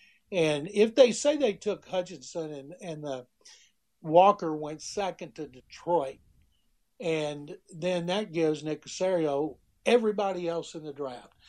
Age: 60-79